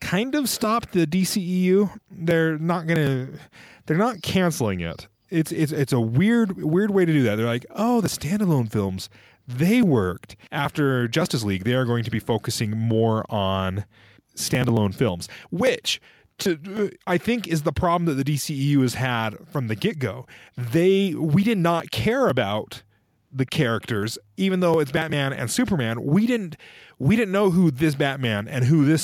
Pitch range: 110-165 Hz